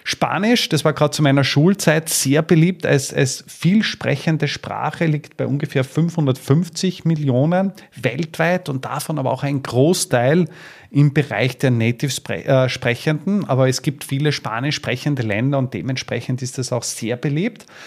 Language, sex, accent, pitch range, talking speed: German, male, Austrian, 125-150 Hz, 145 wpm